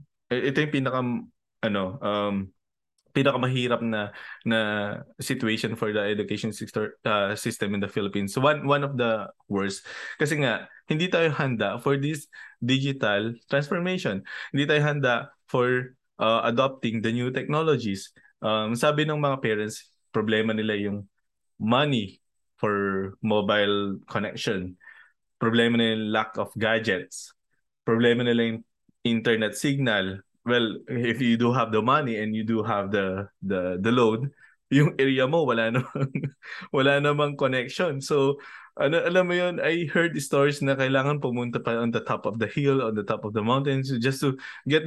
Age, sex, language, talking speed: 20-39, male, Filipino, 155 wpm